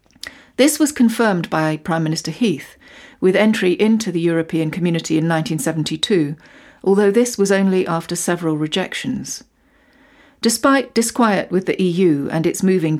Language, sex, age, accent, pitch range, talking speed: English, female, 40-59, British, 165-230 Hz, 140 wpm